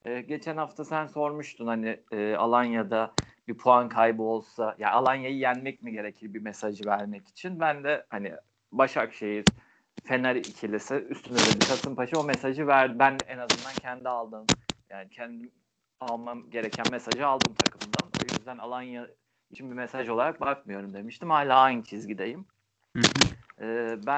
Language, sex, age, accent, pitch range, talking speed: Turkish, male, 40-59, native, 110-140 Hz, 150 wpm